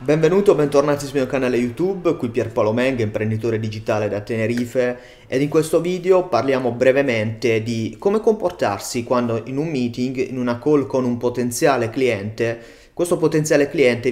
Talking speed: 155 wpm